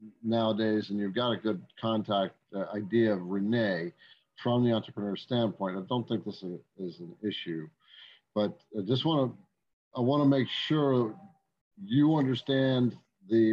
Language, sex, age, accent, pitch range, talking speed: English, male, 50-69, American, 105-135 Hz, 160 wpm